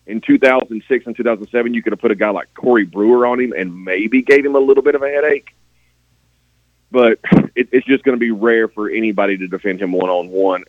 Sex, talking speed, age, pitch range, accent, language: male, 215 wpm, 30-49, 80-120 Hz, American, English